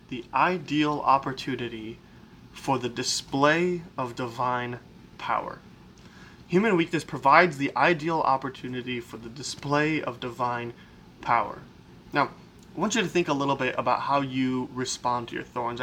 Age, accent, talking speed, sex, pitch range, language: 20-39, American, 140 wpm, male, 120-145 Hz, English